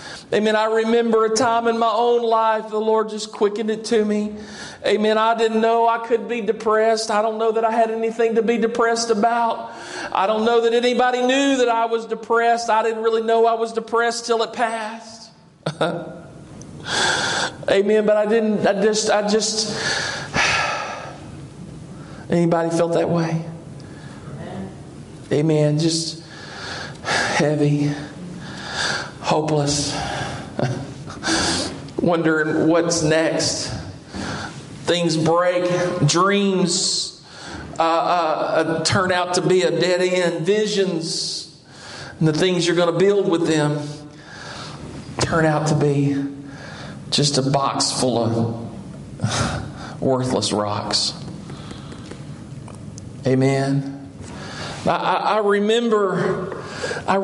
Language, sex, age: English, male, 50-69